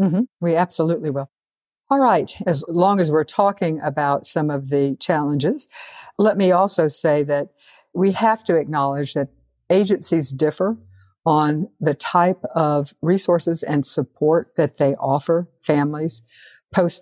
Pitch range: 140-170 Hz